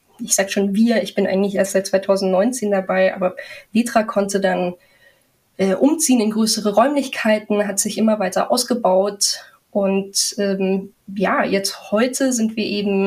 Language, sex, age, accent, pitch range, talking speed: German, female, 20-39, German, 195-225 Hz, 150 wpm